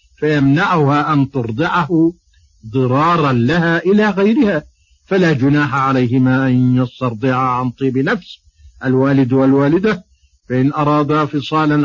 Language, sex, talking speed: Arabic, male, 100 wpm